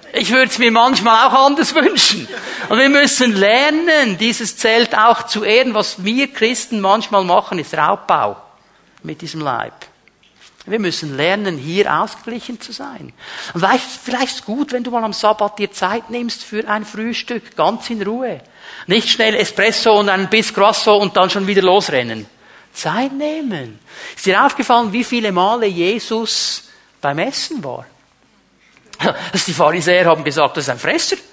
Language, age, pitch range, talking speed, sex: German, 50-69, 180-245 Hz, 165 wpm, male